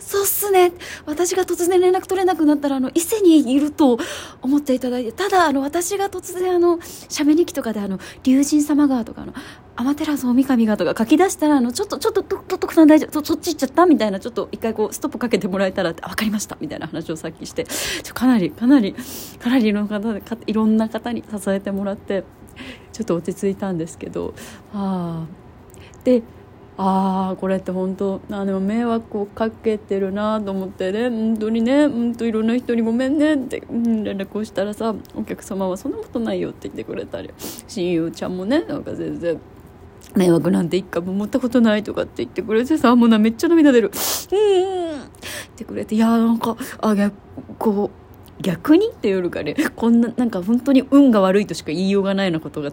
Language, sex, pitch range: Japanese, female, 195-295 Hz